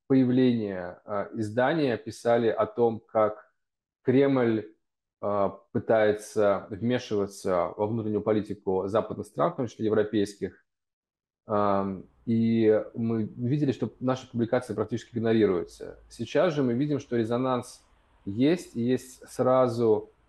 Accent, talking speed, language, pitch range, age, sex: native, 105 wpm, Russian, 100-120 Hz, 20-39, male